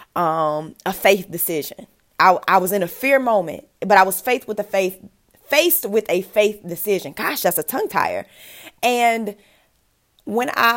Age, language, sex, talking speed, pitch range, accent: 20-39, English, female, 165 wpm, 160-200 Hz, American